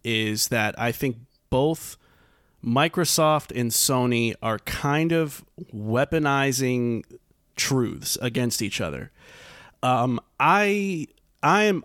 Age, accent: 30-49, American